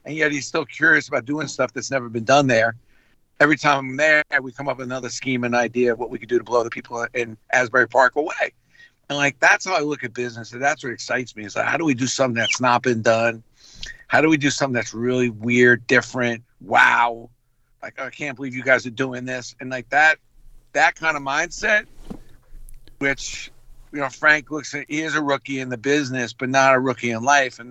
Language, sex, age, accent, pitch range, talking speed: English, male, 50-69, American, 120-140 Hz, 235 wpm